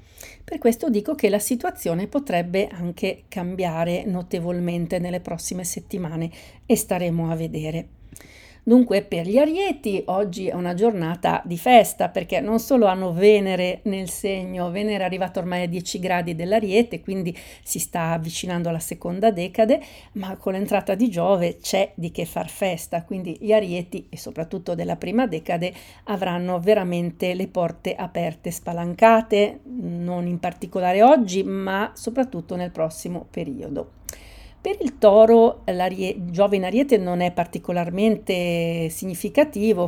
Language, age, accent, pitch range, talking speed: Italian, 50-69, native, 175-210 Hz, 140 wpm